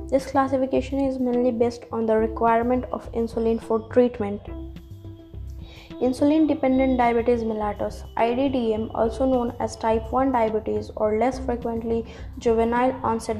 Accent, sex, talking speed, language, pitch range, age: Indian, female, 120 wpm, English, 220-250 Hz, 20-39